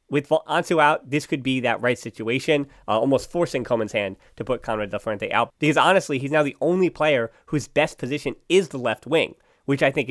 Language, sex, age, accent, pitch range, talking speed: English, male, 20-39, American, 125-160 Hz, 220 wpm